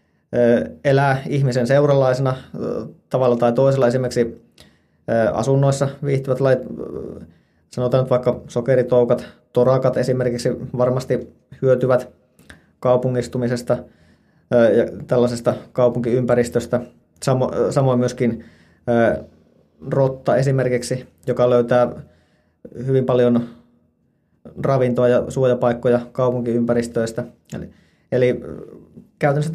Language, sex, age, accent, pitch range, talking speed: Finnish, male, 20-39, native, 120-130 Hz, 70 wpm